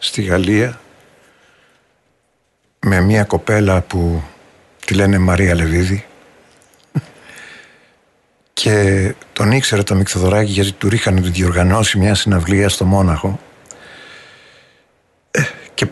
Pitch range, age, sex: 90-115 Hz, 50-69, male